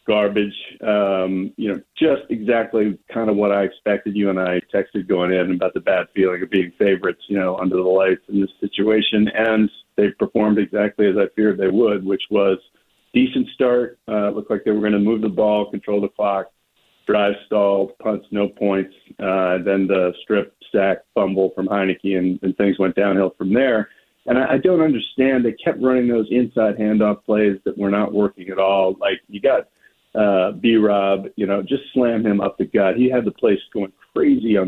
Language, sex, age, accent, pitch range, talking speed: English, male, 40-59, American, 95-110 Hz, 205 wpm